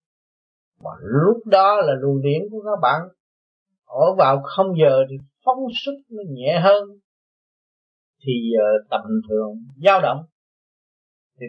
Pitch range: 135-185 Hz